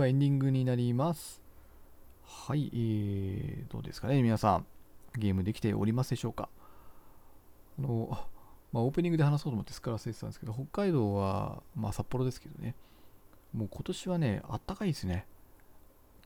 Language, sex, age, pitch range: Japanese, male, 40-59, 105-155 Hz